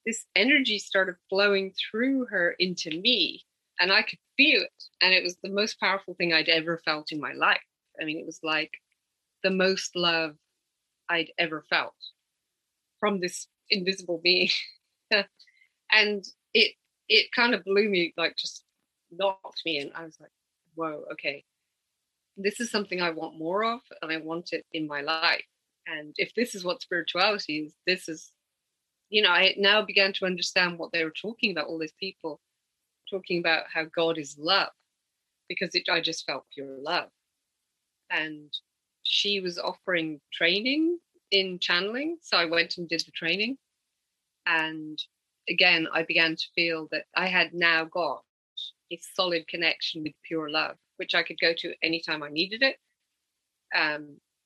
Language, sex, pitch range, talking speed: English, female, 160-195 Hz, 165 wpm